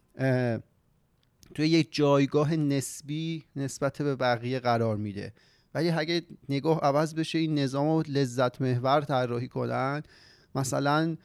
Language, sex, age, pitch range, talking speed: Persian, male, 30-49, 120-145 Hz, 110 wpm